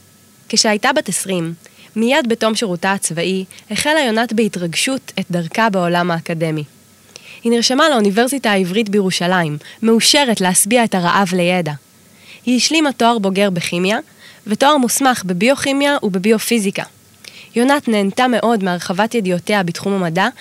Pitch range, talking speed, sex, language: 180-235 Hz, 120 wpm, female, Hebrew